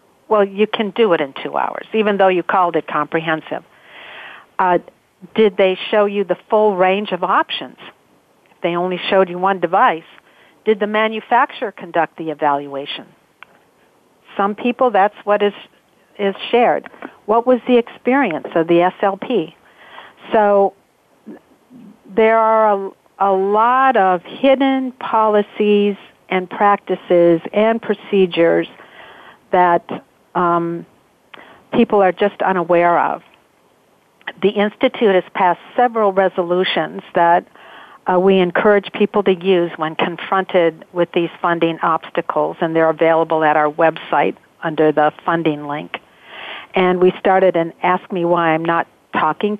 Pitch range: 170-215 Hz